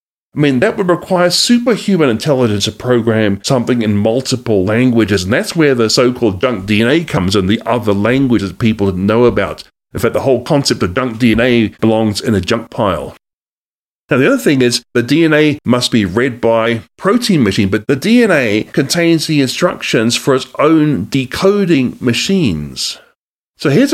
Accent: British